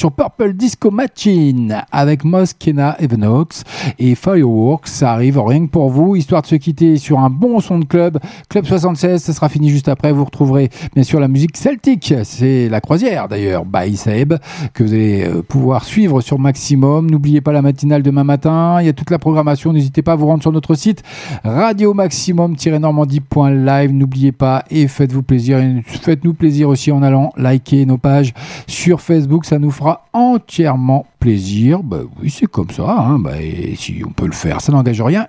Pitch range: 130-170 Hz